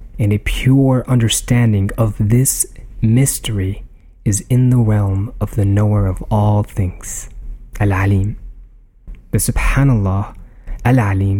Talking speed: 110 wpm